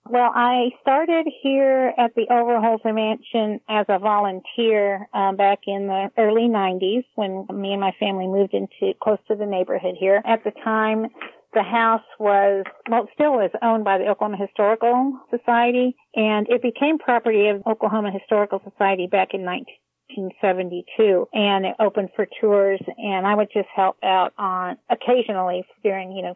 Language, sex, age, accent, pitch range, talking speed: English, female, 50-69, American, 195-225 Hz, 170 wpm